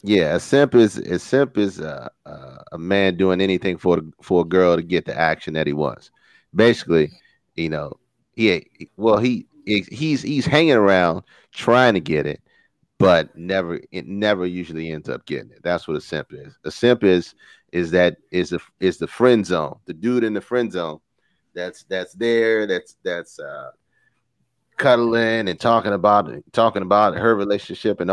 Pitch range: 85-115 Hz